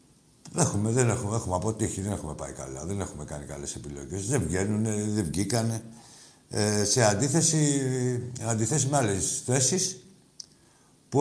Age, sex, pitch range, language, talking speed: 60-79, male, 110-150 Hz, Greek, 130 wpm